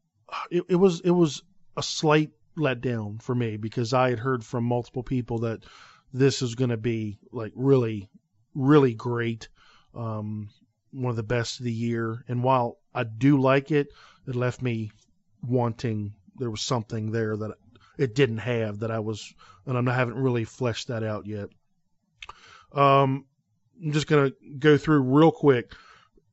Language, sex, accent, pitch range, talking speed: English, male, American, 120-145 Hz, 165 wpm